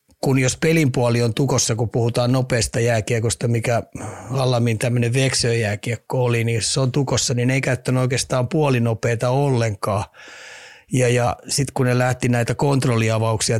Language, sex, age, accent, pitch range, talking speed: Finnish, male, 30-49, native, 115-135 Hz, 145 wpm